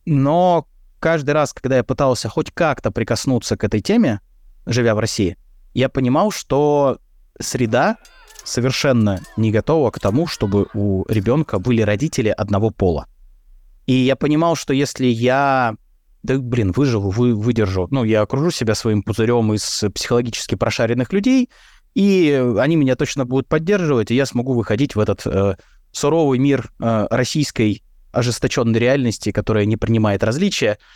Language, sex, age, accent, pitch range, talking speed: Russian, male, 20-39, native, 105-140 Hz, 145 wpm